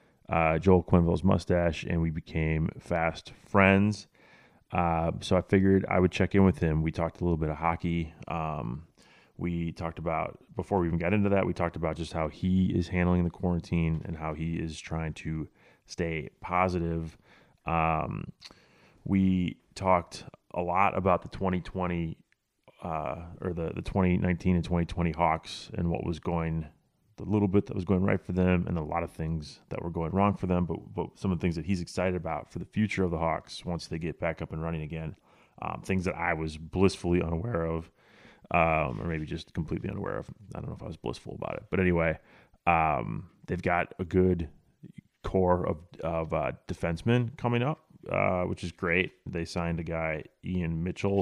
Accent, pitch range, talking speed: American, 80-95 Hz, 200 wpm